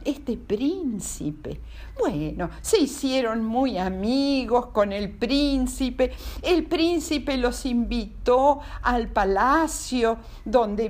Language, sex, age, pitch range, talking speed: Spanish, female, 50-69, 205-310 Hz, 95 wpm